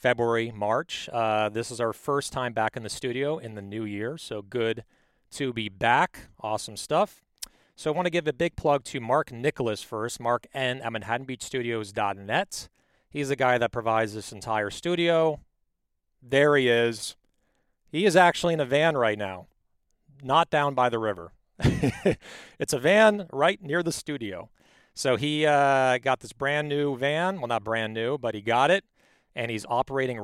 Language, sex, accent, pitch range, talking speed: English, male, American, 110-145 Hz, 175 wpm